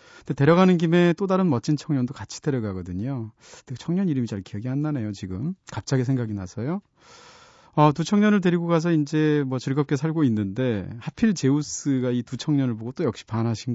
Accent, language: native, Korean